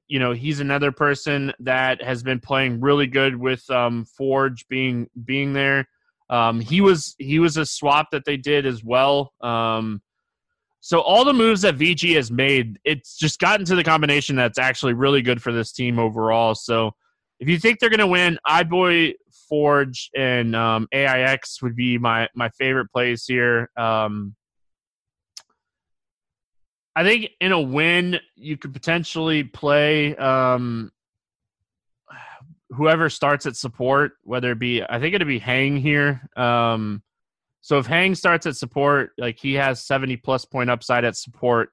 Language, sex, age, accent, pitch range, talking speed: English, male, 20-39, American, 115-145 Hz, 165 wpm